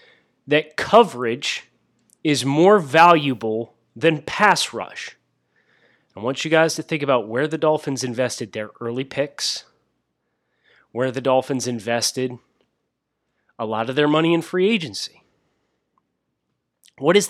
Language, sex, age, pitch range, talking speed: English, male, 30-49, 130-175 Hz, 125 wpm